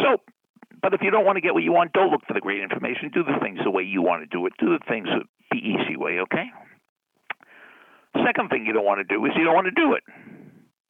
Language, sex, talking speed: English, male, 260 wpm